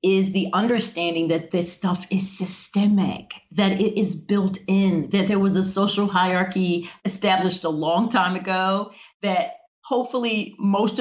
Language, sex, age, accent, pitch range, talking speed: English, female, 40-59, American, 170-235 Hz, 145 wpm